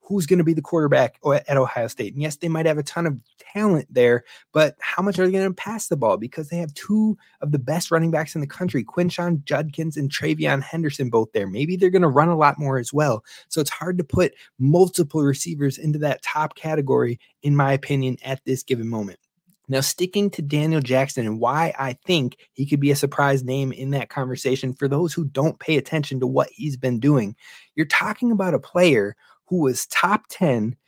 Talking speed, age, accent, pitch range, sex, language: 220 wpm, 20-39, American, 135-170 Hz, male, English